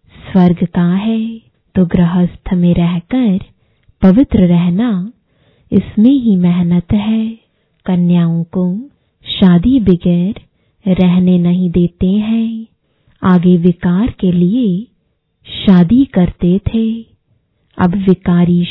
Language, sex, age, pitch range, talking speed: English, female, 20-39, 175-215 Hz, 95 wpm